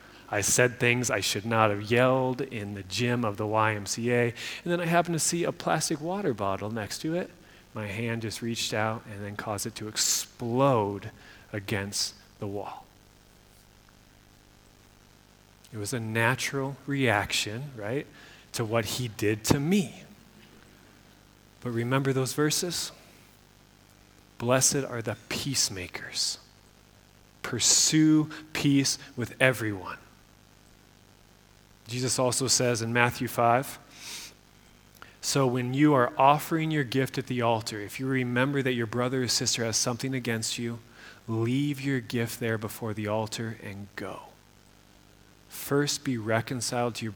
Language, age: English, 30-49